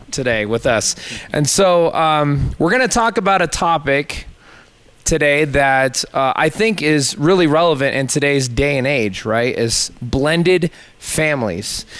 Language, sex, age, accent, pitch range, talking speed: English, male, 20-39, American, 130-160 Hz, 150 wpm